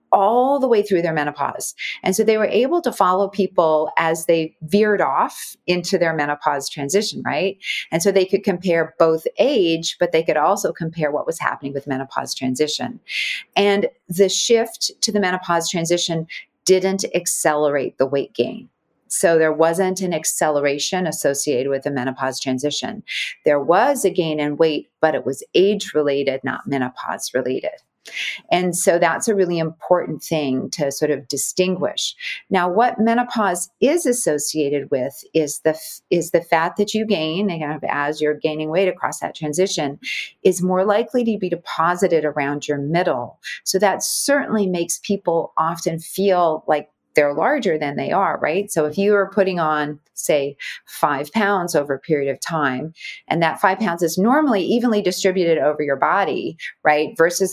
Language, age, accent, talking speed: English, 40-59, American, 165 wpm